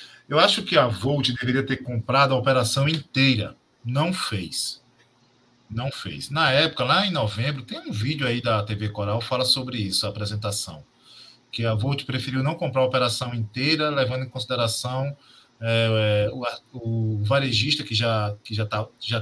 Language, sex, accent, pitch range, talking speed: Portuguese, male, Brazilian, 120-155 Hz, 155 wpm